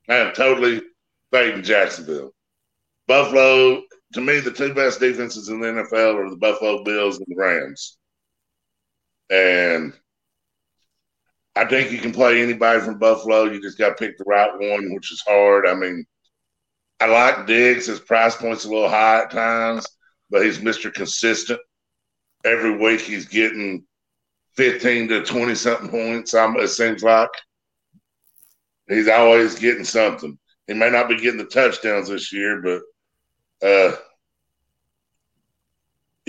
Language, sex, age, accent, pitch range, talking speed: English, male, 50-69, American, 105-120 Hz, 140 wpm